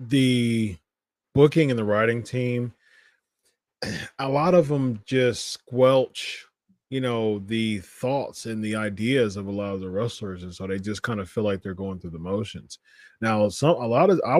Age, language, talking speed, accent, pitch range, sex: 30-49, English, 185 wpm, American, 110-135 Hz, male